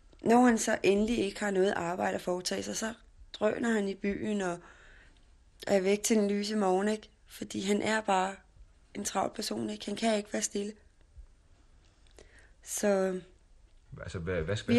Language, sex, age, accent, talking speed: Danish, female, 30-49, native, 160 wpm